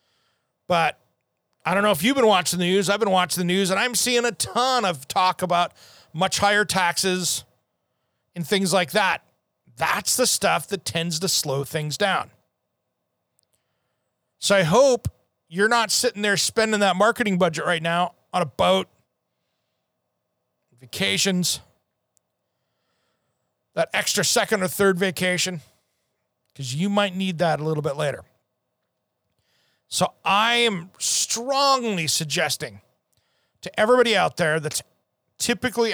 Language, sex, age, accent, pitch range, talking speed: English, male, 40-59, American, 155-210 Hz, 135 wpm